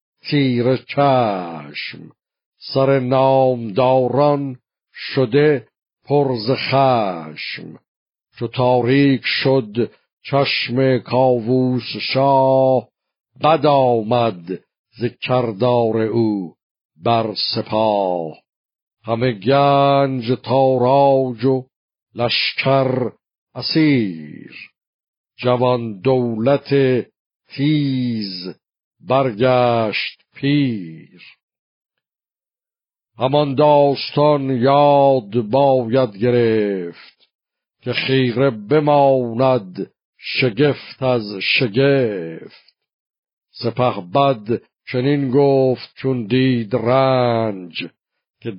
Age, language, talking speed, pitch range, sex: 60-79, Persian, 60 wpm, 115-135 Hz, male